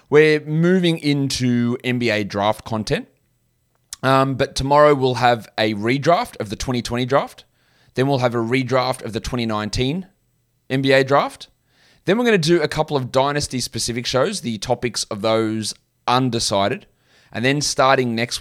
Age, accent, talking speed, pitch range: 20-39, Australian, 150 wpm, 105-130 Hz